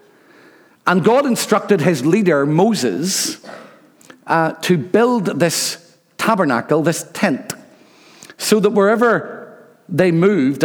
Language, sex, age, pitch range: English, male, 50-69, 145-190 Hz